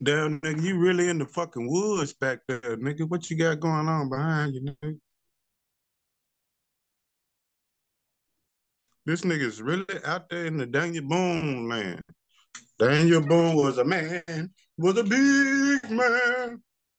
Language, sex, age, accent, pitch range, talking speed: English, male, 50-69, American, 130-180 Hz, 135 wpm